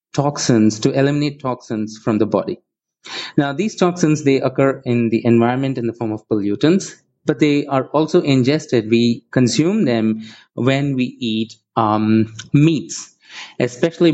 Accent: Indian